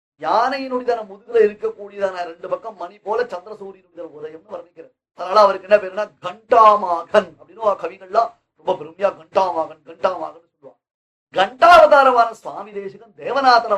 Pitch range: 170-225 Hz